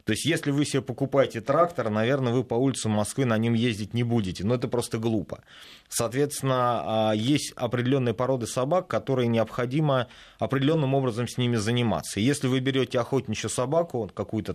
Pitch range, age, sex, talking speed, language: 105-135 Hz, 30-49, male, 160 wpm, Russian